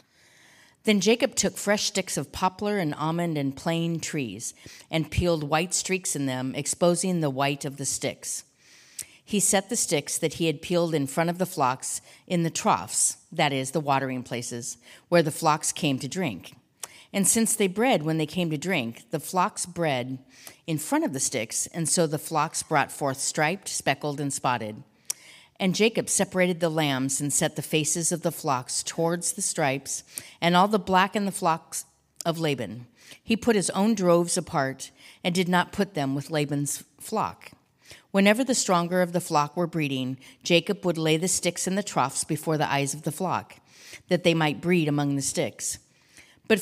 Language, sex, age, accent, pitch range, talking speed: English, female, 50-69, American, 140-185 Hz, 190 wpm